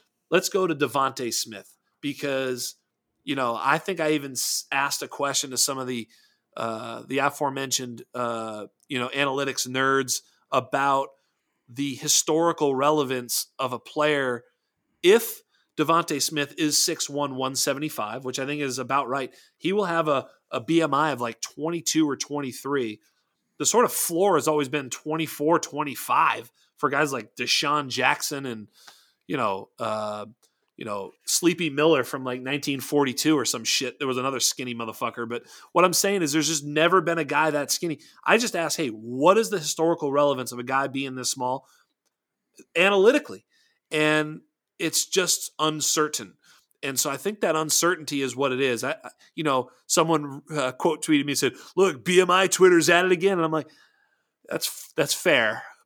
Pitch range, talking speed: 130-160 Hz, 165 wpm